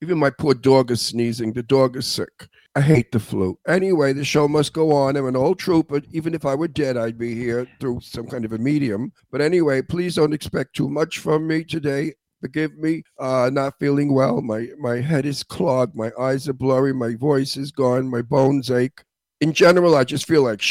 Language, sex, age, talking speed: English, male, 50-69, 220 wpm